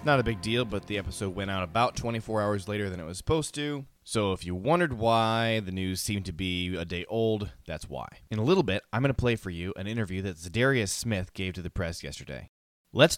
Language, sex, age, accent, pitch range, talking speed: English, male, 20-39, American, 90-115 Hz, 245 wpm